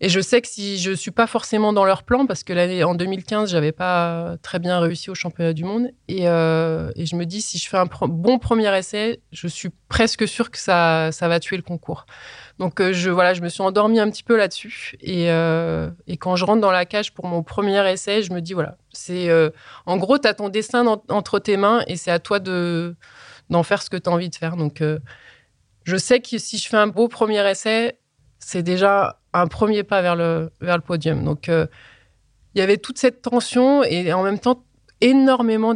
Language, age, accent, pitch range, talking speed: French, 20-39, French, 170-215 Hz, 235 wpm